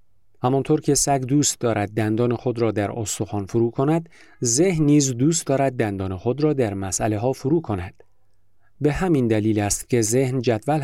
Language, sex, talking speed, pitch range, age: Persian, male, 170 wpm, 105-135 Hz, 40-59